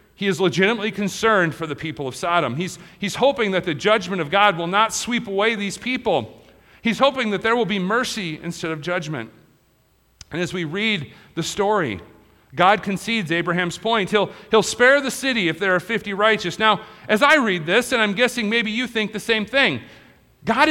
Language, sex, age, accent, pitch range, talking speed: English, male, 40-59, American, 170-245 Hz, 195 wpm